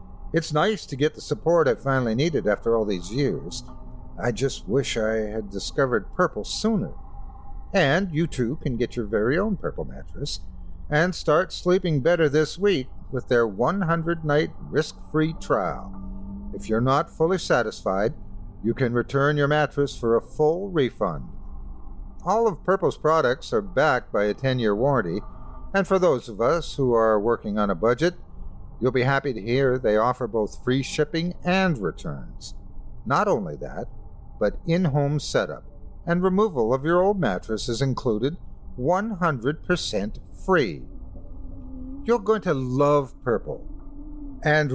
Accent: American